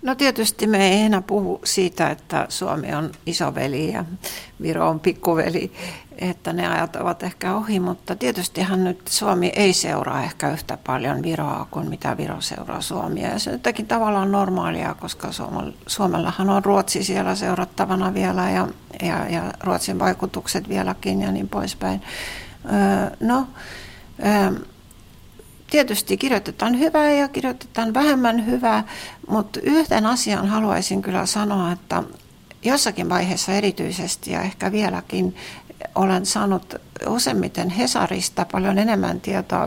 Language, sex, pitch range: Finnish, female, 185-215 Hz